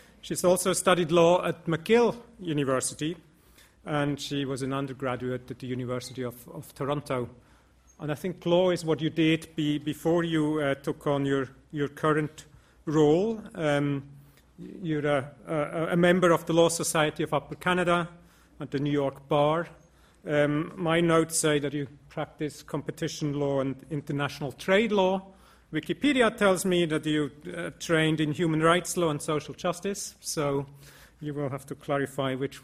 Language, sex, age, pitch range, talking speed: English, male, 40-59, 140-165 Hz, 160 wpm